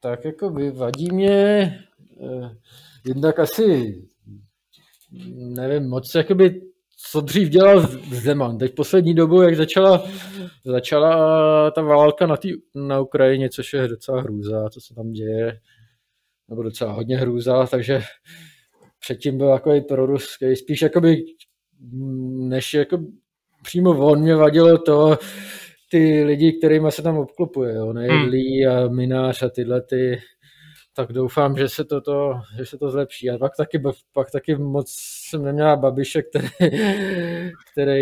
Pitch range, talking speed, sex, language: 130-160 Hz, 140 wpm, male, Czech